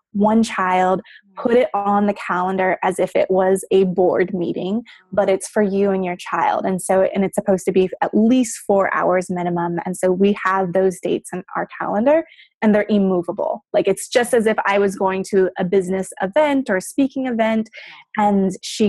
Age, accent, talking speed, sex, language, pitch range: 20-39, American, 200 wpm, female, English, 190-225 Hz